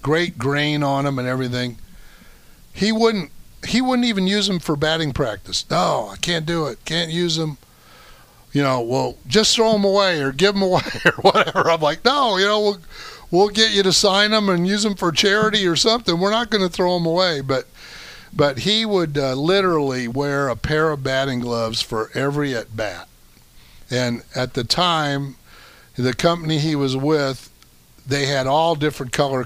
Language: English